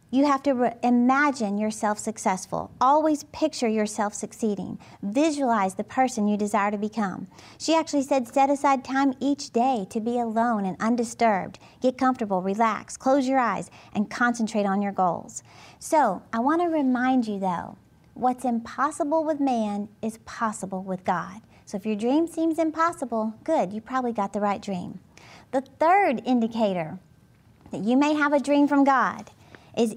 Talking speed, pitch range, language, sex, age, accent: 160 wpm, 210-275 Hz, English, female, 40-59, American